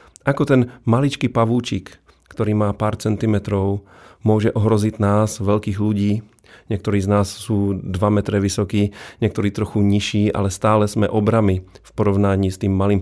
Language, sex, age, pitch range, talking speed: Slovak, male, 40-59, 100-110 Hz, 145 wpm